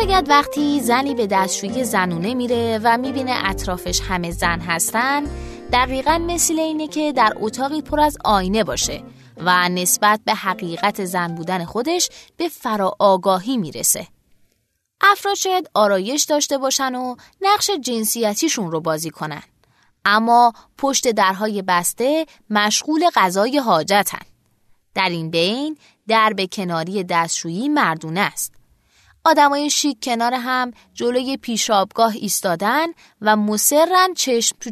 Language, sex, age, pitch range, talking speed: Persian, female, 20-39, 185-280 Hz, 125 wpm